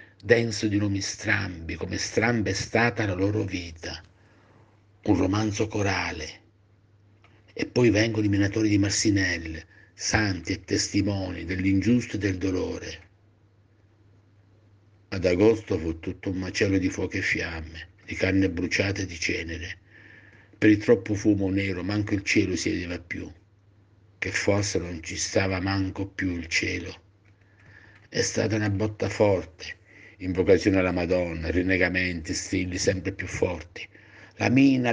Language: Italian